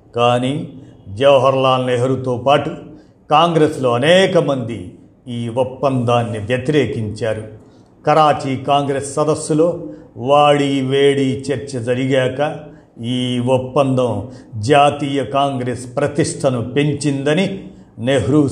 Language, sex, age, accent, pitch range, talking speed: Telugu, male, 50-69, native, 120-145 Hz, 80 wpm